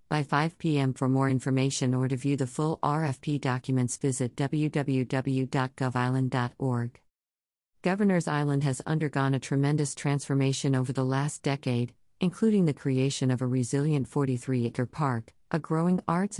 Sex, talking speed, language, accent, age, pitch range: female, 140 wpm, English, American, 50-69, 130-155 Hz